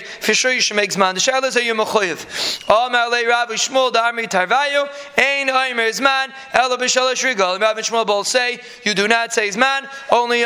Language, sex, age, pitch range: English, male, 20-39, 225-260 Hz